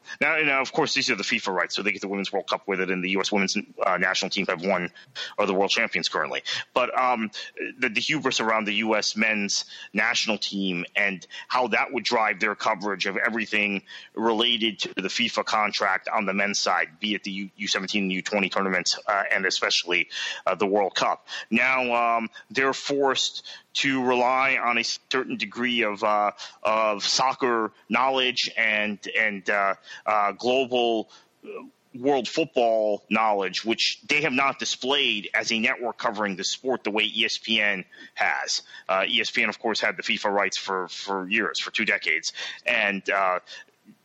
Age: 30-49